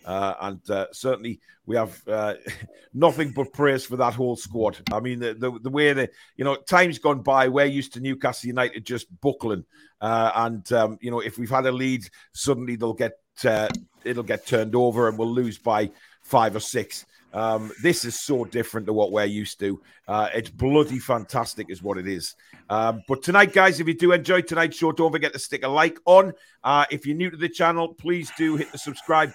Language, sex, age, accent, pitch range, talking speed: English, male, 40-59, British, 120-145 Hz, 215 wpm